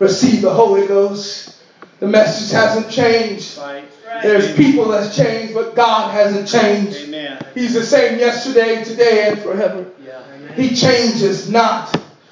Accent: American